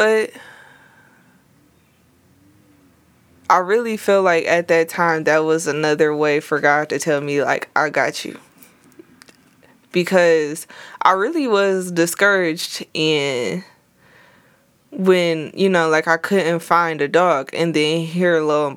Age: 20-39